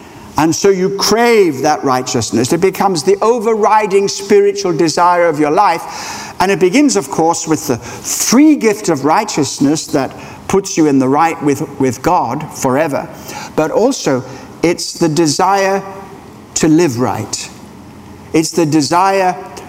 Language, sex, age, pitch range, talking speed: English, male, 60-79, 150-210 Hz, 145 wpm